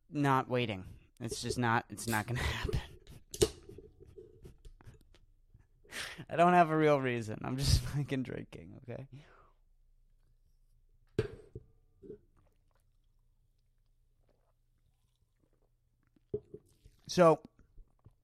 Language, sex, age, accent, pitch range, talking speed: English, male, 30-49, American, 120-150 Hz, 70 wpm